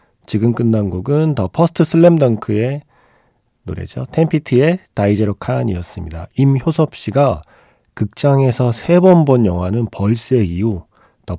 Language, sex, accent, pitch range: Korean, male, native, 95-130 Hz